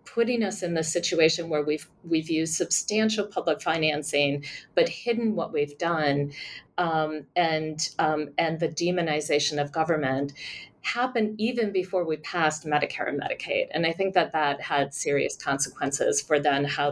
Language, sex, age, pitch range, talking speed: English, female, 40-59, 150-185 Hz, 155 wpm